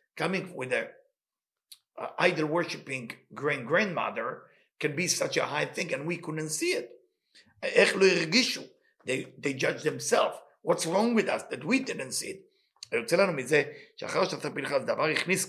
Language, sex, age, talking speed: English, male, 50-69, 125 wpm